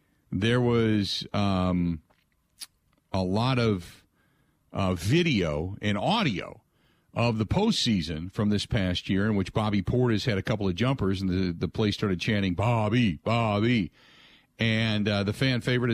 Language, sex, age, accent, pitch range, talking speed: English, male, 50-69, American, 100-130 Hz, 145 wpm